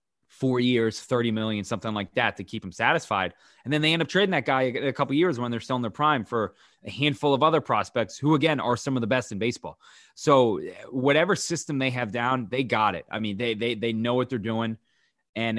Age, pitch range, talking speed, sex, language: 20-39, 110-140 Hz, 245 wpm, male, English